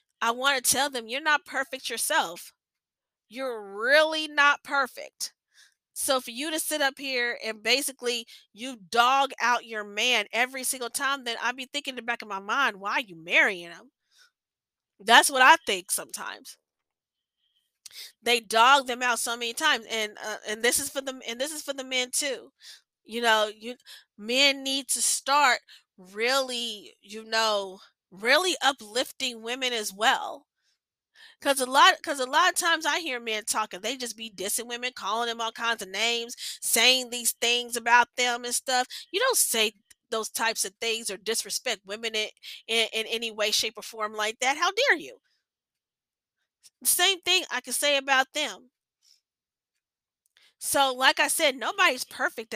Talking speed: 175 wpm